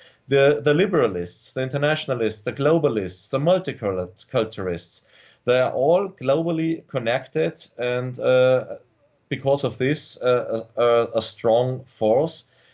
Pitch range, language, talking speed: 120-145 Hz, English, 115 wpm